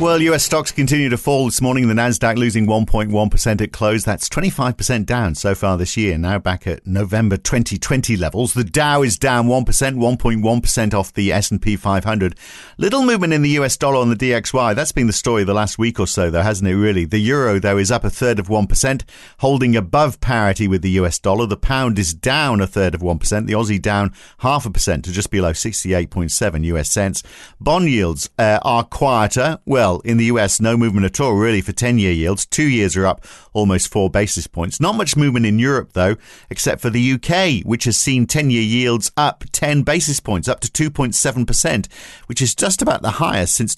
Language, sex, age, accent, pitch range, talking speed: English, male, 50-69, British, 100-125 Hz, 205 wpm